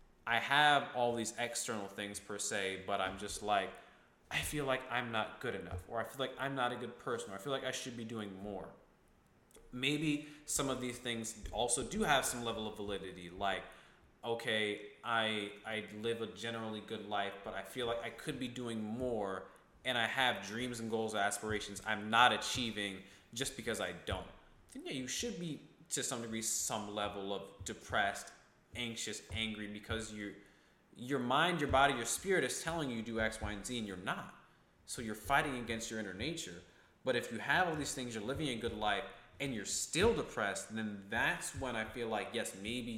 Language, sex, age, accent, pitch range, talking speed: English, male, 20-39, American, 105-125 Hz, 205 wpm